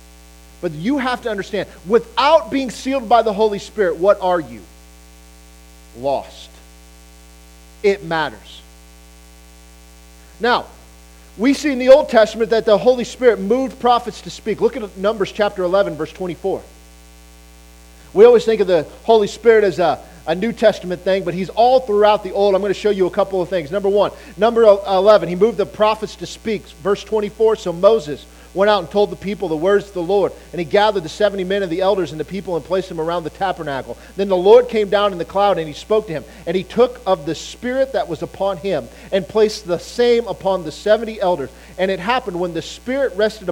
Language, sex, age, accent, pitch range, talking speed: English, male, 40-59, American, 160-215 Hz, 205 wpm